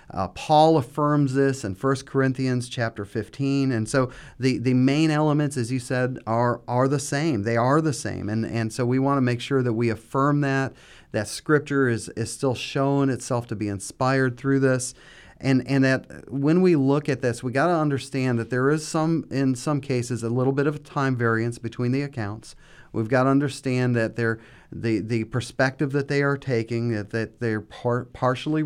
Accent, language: American, English